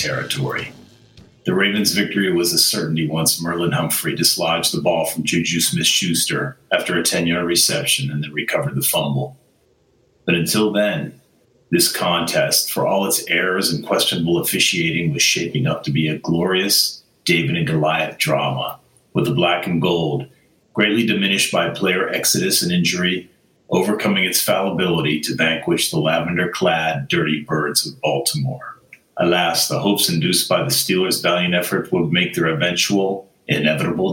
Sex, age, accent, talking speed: male, 40-59, American, 150 wpm